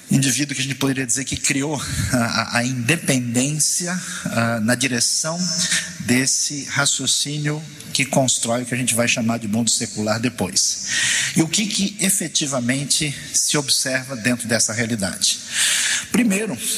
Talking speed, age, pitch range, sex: 140 wpm, 50-69, 120-150 Hz, male